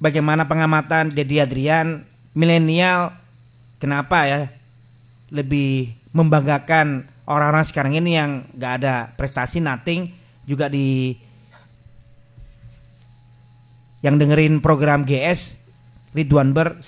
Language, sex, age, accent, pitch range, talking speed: Indonesian, male, 30-49, native, 125-180 Hz, 90 wpm